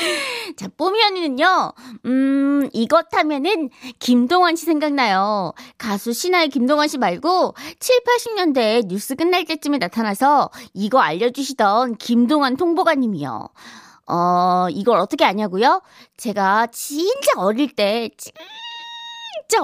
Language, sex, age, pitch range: Korean, female, 20-39, 225-335 Hz